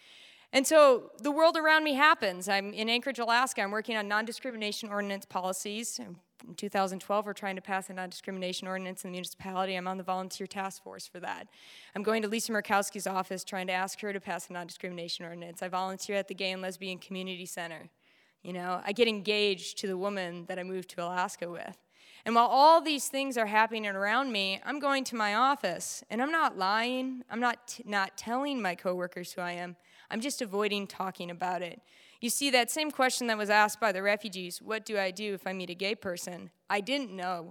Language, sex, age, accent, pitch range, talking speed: English, female, 20-39, American, 185-235 Hz, 215 wpm